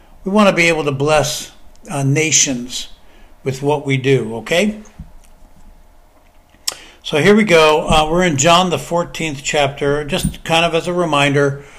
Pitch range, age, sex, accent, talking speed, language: 140-165 Hz, 60-79, male, American, 160 wpm, English